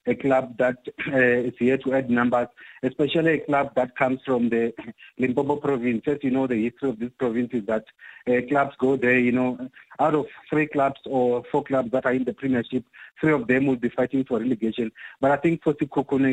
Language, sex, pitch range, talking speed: English, male, 125-145 Hz, 215 wpm